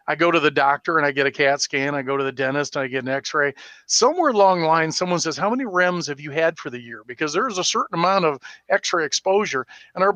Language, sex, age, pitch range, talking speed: English, male, 40-59, 145-165 Hz, 270 wpm